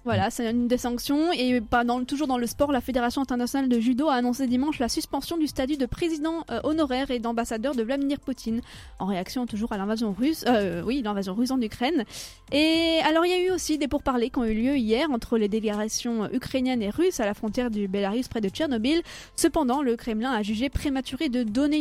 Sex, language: female, French